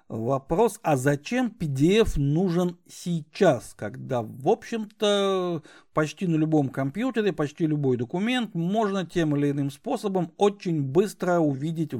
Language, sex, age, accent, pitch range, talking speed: Russian, male, 60-79, native, 140-195 Hz, 120 wpm